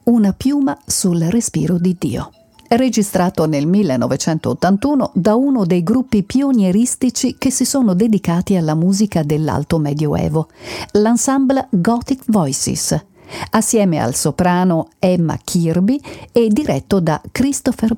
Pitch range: 165-235 Hz